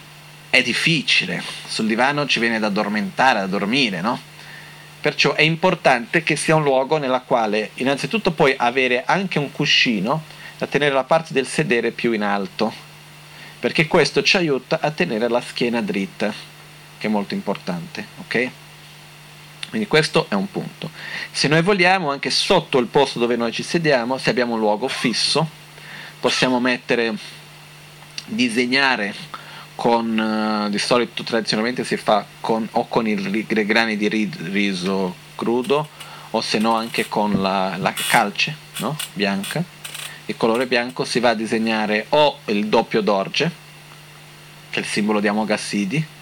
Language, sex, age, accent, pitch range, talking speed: Italian, male, 40-59, native, 110-155 Hz, 150 wpm